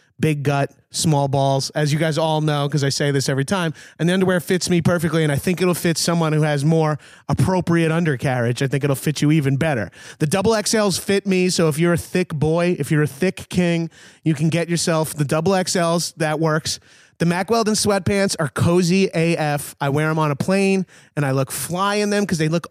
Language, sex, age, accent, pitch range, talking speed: English, male, 30-49, American, 150-185 Hz, 225 wpm